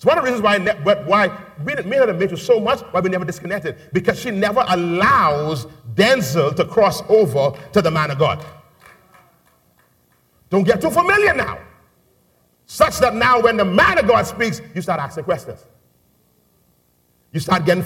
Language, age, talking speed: English, 50-69, 175 wpm